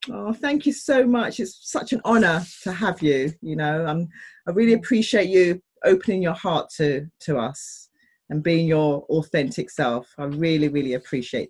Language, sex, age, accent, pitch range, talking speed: English, female, 30-49, British, 165-220 Hz, 185 wpm